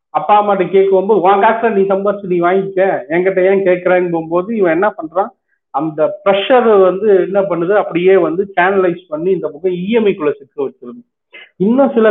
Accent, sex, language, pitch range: native, male, Tamil, 155-210 Hz